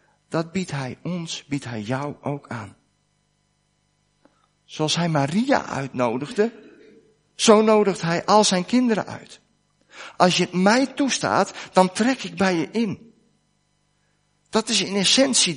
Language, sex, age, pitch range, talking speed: Dutch, male, 50-69, 145-185 Hz, 130 wpm